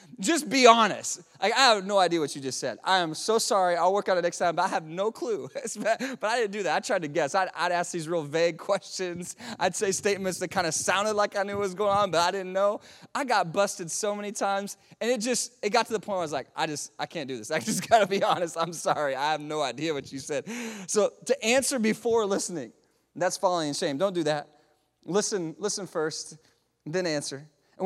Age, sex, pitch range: 20-39, male, 165-210 Hz